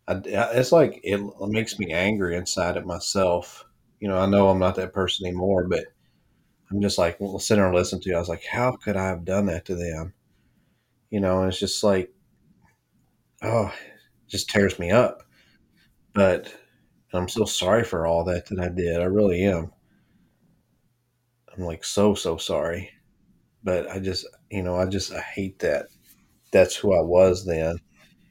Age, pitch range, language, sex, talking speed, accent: 30-49, 90-110 Hz, English, male, 180 wpm, American